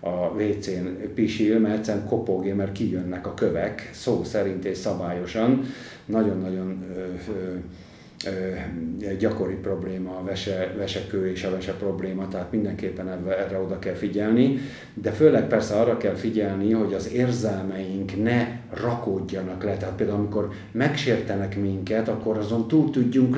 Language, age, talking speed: Hungarian, 50-69, 135 wpm